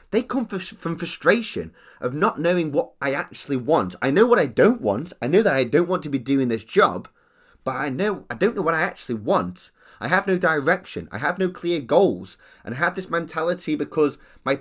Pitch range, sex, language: 115-180 Hz, male, English